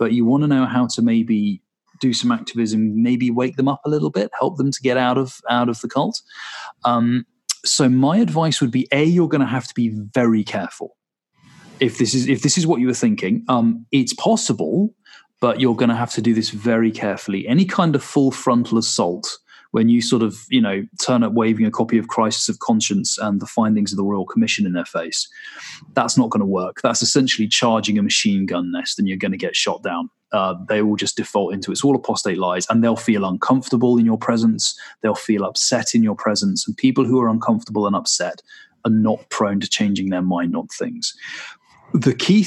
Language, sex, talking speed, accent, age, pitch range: English, male, 225 wpm, British, 30-49, 110-140 Hz